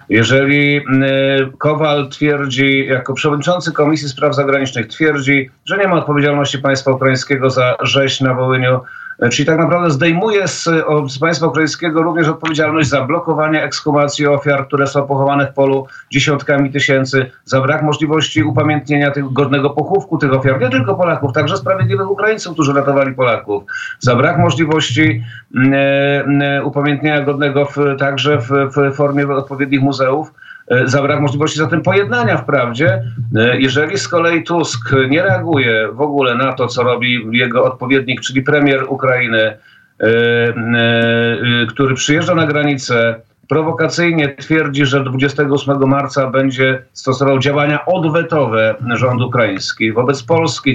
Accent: native